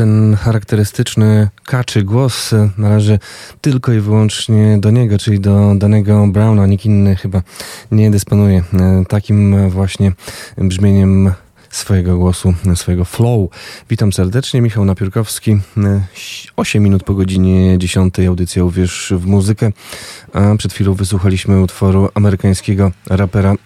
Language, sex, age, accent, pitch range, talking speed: Polish, male, 20-39, native, 95-105 Hz, 115 wpm